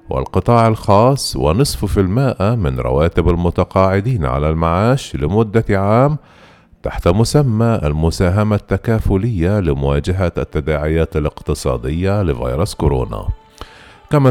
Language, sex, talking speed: Arabic, male, 90 wpm